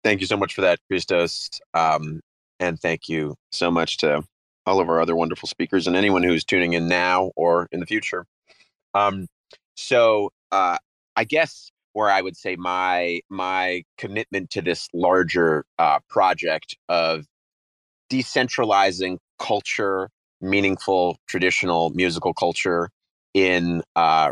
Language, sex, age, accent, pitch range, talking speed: English, male, 30-49, American, 80-95 Hz, 140 wpm